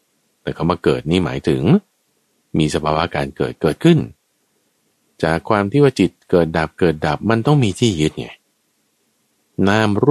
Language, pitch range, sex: Thai, 75-115 Hz, male